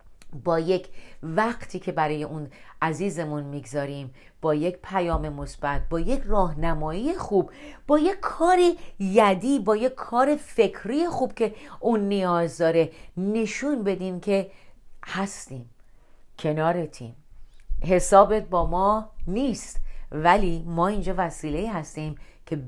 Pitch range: 155-215 Hz